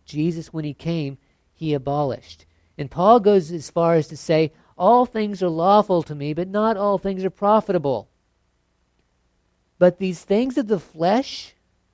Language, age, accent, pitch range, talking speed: English, 50-69, American, 135-170 Hz, 160 wpm